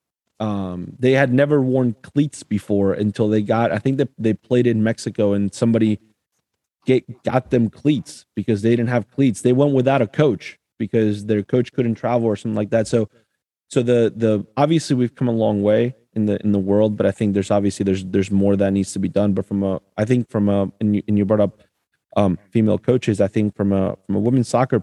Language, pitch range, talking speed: English, 100-120 Hz, 225 wpm